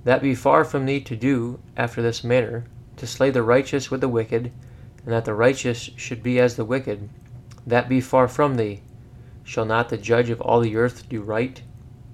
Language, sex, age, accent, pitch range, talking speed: English, male, 30-49, American, 115-130 Hz, 205 wpm